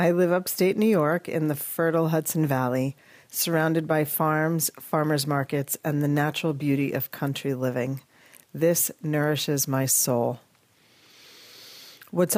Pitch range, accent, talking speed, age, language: 140-175 Hz, American, 130 wpm, 40-59, English